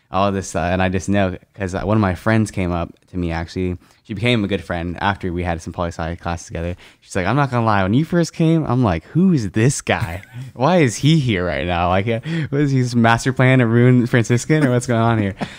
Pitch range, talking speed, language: 90-110 Hz, 260 wpm, English